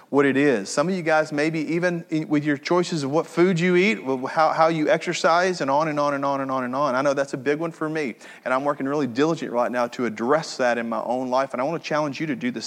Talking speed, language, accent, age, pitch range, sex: 295 wpm, English, American, 30-49, 125-160 Hz, male